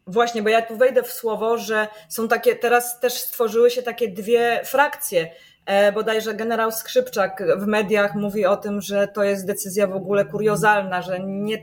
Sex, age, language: female, 20-39, Polish